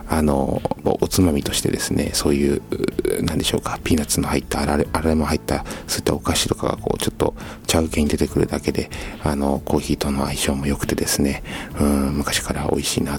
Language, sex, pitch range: Japanese, male, 75-90 Hz